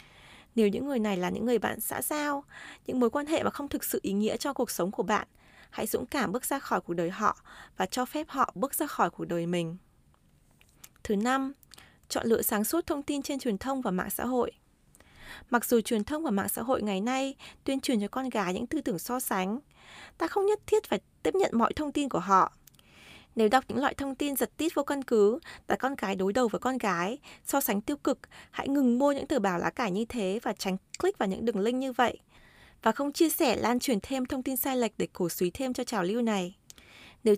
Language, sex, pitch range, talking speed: Vietnamese, female, 210-280 Hz, 245 wpm